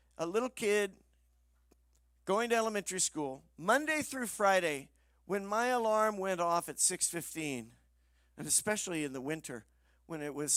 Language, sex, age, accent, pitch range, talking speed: English, male, 50-69, American, 135-195 Hz, 140 wpm